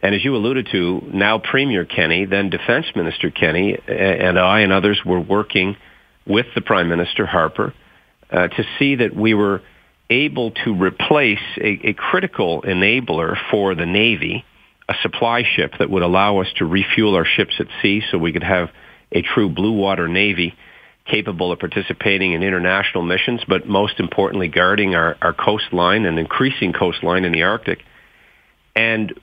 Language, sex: English, male